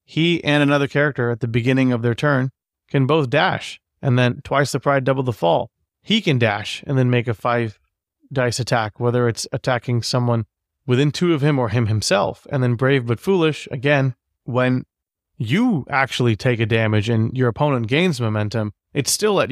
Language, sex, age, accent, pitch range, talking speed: English, male, 30-49, American, 110-135 Hz, 190 wpm